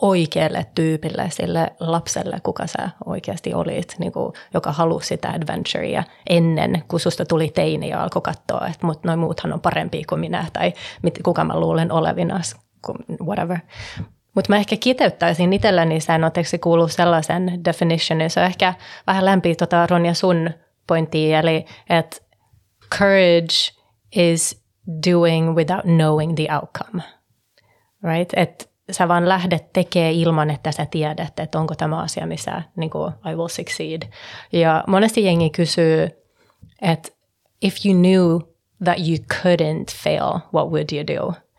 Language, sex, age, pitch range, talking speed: Finnish, female, 30-49, 160-180 Hz, 145 wpm